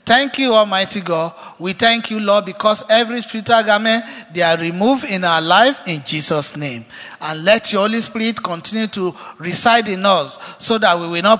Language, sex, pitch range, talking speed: English, male, 160-220 Hz, 190 wpm